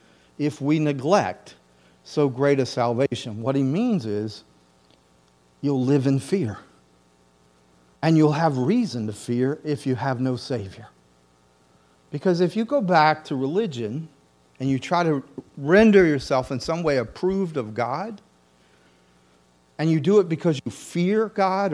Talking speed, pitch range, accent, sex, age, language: 145 wpm, 110-175 Hz, American, male, 40-59, English